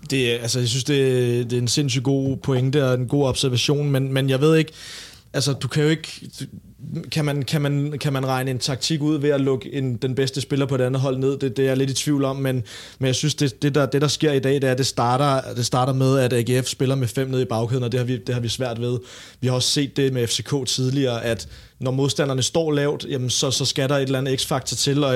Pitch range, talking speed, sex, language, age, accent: 125-145 Hz, 280 wpm, male, Danish, 30-49, native